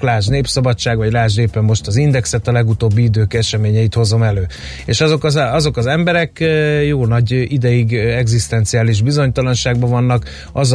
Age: 30-49